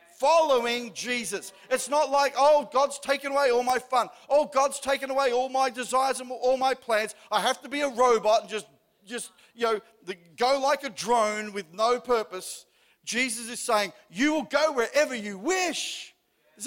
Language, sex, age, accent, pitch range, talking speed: English, male, 50-69, Australian, 195-255 Hz, 185 wpm